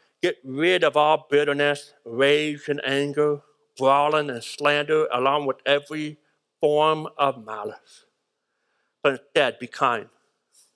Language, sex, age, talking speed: English, male, 60-79, 115 wpm